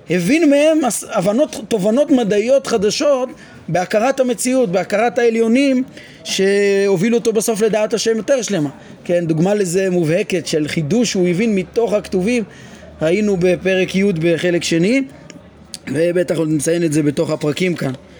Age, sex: 30-49, male